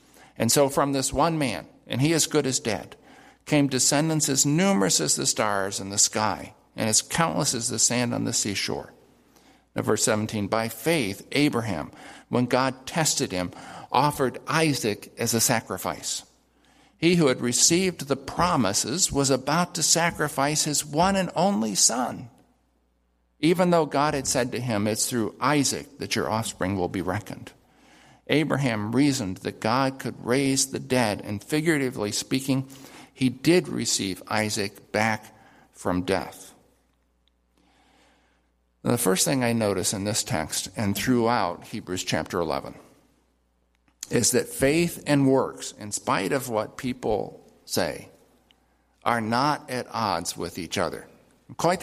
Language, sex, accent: English, male, American